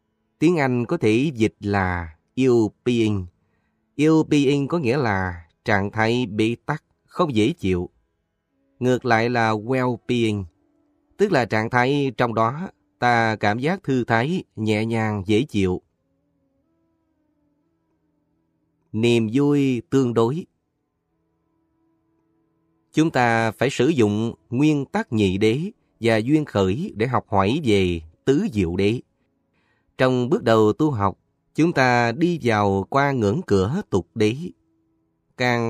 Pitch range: 105-145 Hz